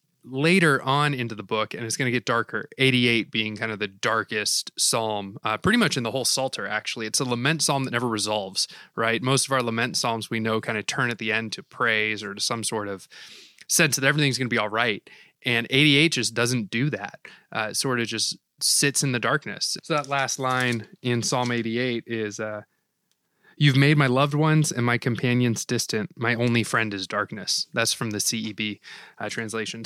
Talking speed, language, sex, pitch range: 210 wpm, English, male, 115-145 Hz